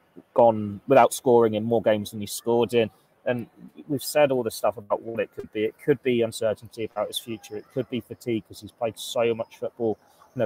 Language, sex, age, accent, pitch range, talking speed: English, male, 20-39, British, 105-120 Hz, 230 wpm